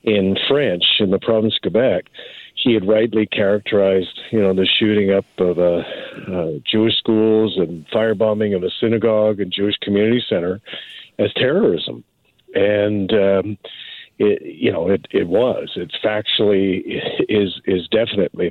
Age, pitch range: 50-69, 95-110 Hz